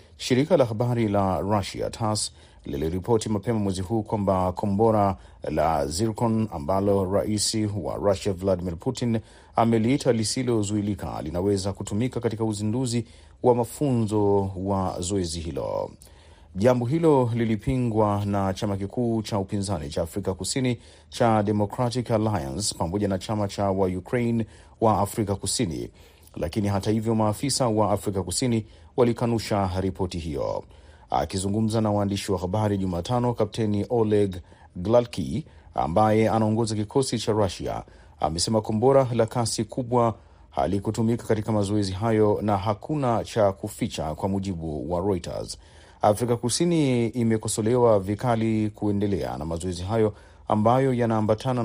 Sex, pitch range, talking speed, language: male, 95-115 Hz, 120 wpm, Swahili